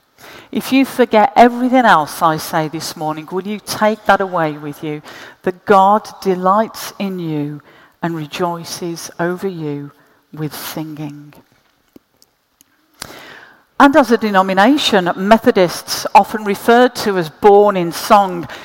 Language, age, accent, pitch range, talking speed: English, 50-69, British, 175-235 Hz, 125 wpm